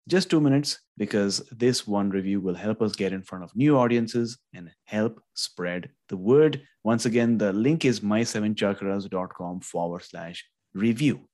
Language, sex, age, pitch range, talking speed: English, male, 30-49, 100-125 Hz, 165 wpm